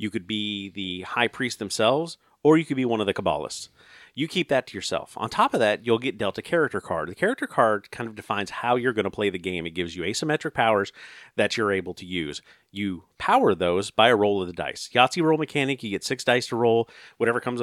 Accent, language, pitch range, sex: American, English, 100-145 Hz, male